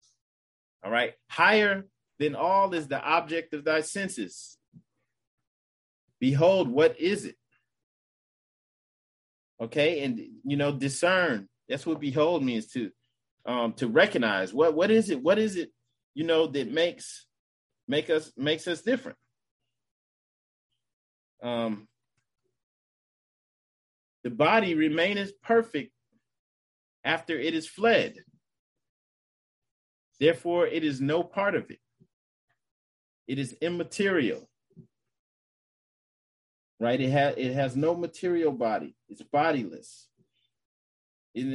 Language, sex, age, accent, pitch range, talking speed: English, male, 30-49, American, 120-170 Hz, 105 wpm